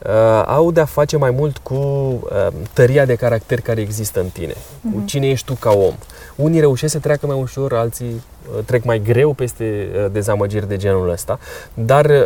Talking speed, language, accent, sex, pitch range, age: 175 wpm, Romanian, native, male, 115-150 Hz, 20-39